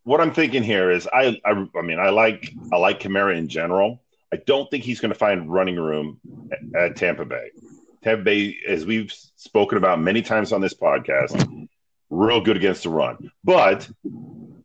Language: English